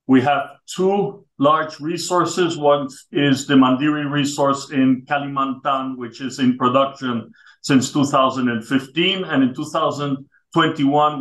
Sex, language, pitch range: male, English, 120-145 Hz